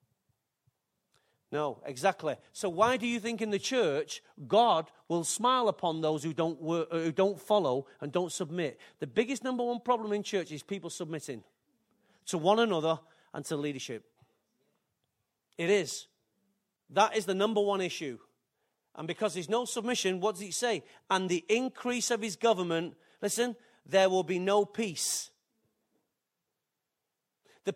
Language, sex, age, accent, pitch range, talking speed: English, male, 40-59, British, 165-225 Hz, 150 wpm